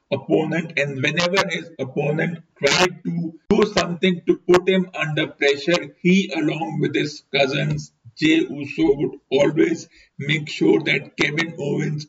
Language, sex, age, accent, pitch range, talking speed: English, male, 50-69, Indian, 140-165 Hz, 140 wpm